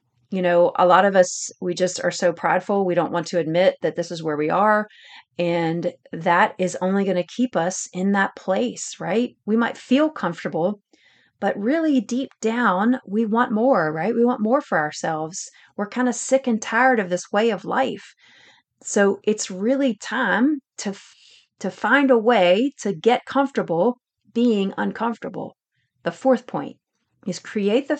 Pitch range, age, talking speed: 180-235 Hz, 40-59, 175 wpm